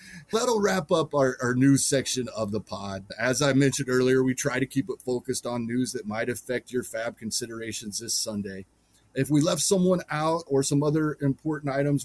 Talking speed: 200 wpm